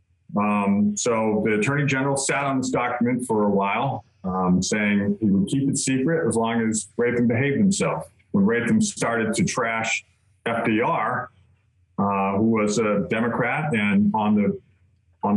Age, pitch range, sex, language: 40-59, 95-130 Hz, male, English